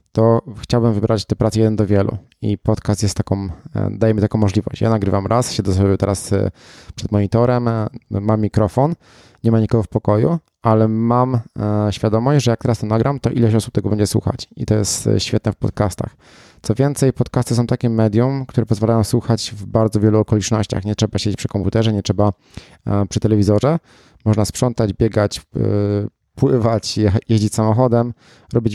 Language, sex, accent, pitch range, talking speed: Polish, male, native, 105-120 Hz, 165 wpm